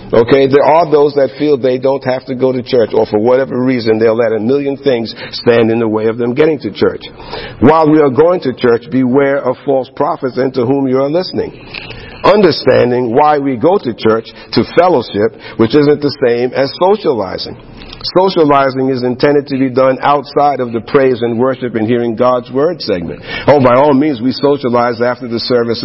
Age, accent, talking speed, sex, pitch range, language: 50-69, American, 200 wpm, male, 110-135 Hz, English